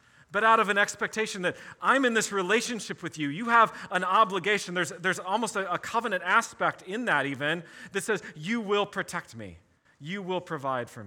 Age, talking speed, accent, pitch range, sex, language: 40-59, 195 wpm, American, 135-200 Hz, male, English